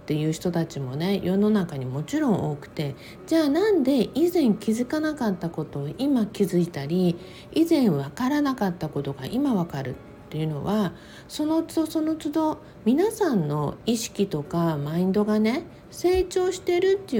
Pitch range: 165-265 Hz